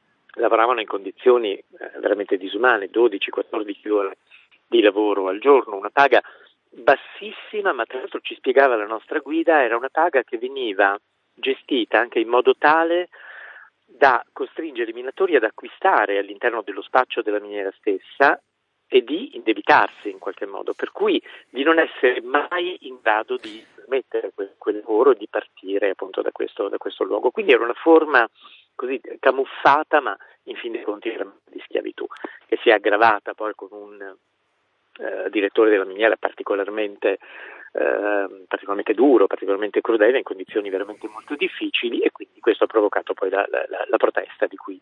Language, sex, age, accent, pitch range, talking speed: Italian, male, 40-59, native, 330-425 Hz, 160 wpm